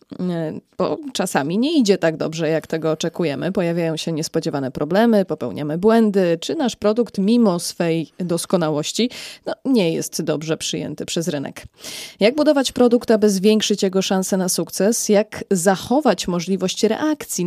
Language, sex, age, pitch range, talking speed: Polish, female, 20-39, 170-215 Hz, 135 wpm